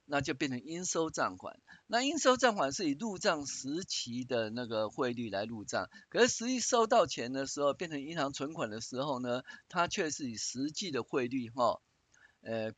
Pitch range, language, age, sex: 120-160 Hz, Chinese, 50-69, male